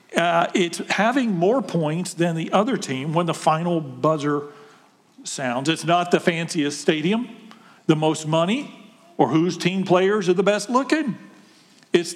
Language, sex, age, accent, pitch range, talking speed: English, male, 50-69, American, 165-225 Hz, 155 wpm